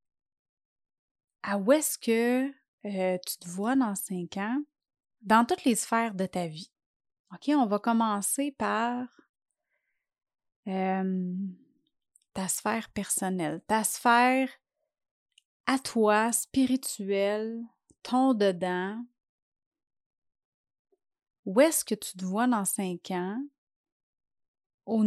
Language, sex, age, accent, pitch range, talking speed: French, female, 30-49, Canadian, 190-255 Hz, 105 wpm